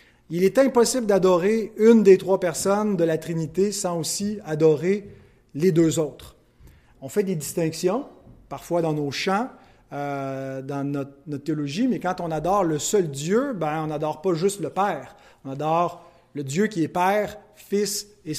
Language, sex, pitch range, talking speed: French, male, 150-200 Hz, 175 wpm